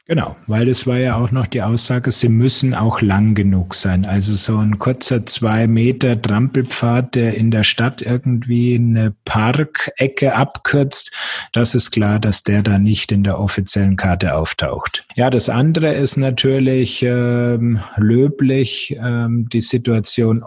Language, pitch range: German, 105-130 Hz